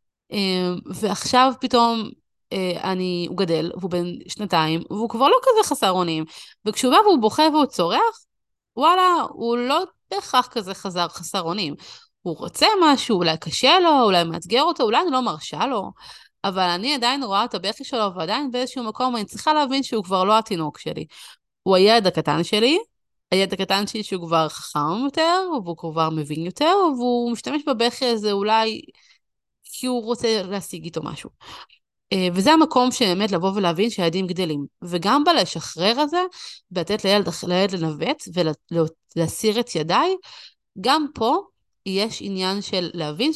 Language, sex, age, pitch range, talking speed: Hebrew, female, 30-49, 175-260 Hz, 150 wpm